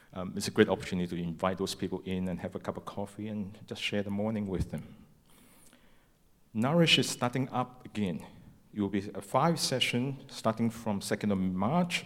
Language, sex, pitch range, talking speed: English, male, 90-110 Hz, 195 wpm